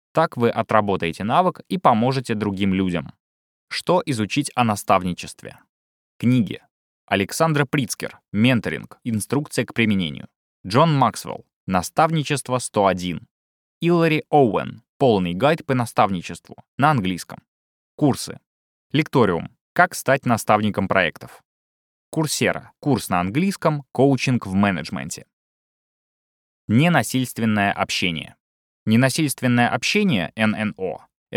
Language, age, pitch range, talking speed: Russian, 20-39, 95-145 Hz, 95 wpm